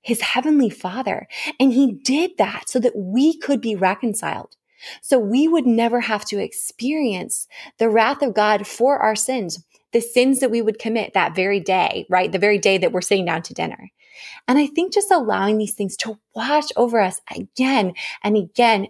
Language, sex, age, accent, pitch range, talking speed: English, female, 20-39, American, 195-255 Hz, 190 wpm